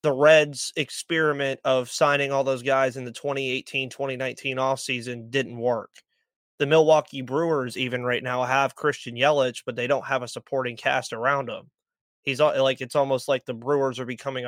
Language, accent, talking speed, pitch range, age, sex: English, American, 175 wpm, 125-145 Hz, 20-39, male